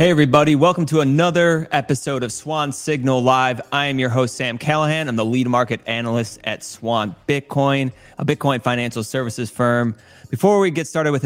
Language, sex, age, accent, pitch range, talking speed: English, male, 20-39, American, 115-140 Hz, 180 wpm